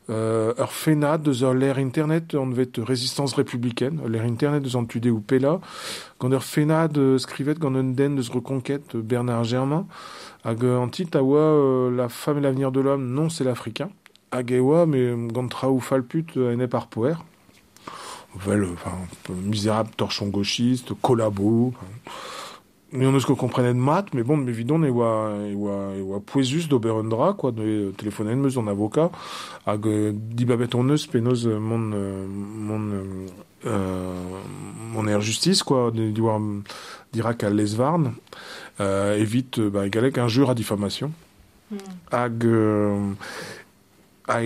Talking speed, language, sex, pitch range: 155 wpm, French, male, 110-135 Hz